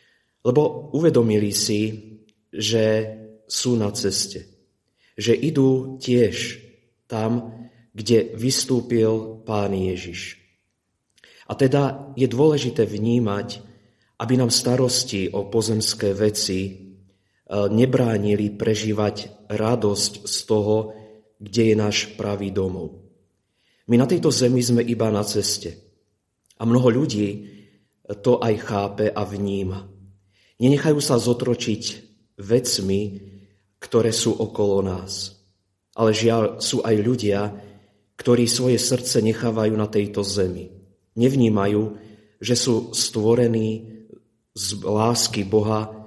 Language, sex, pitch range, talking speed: Slovak, male, 100-120 Hz, 105 wpm